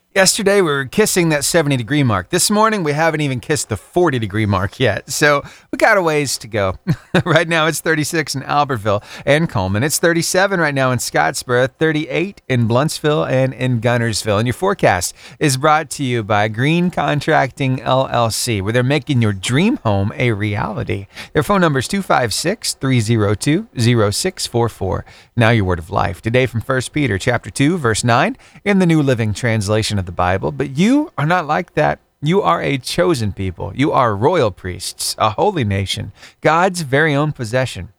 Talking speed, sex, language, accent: 180 wpm, male, English, American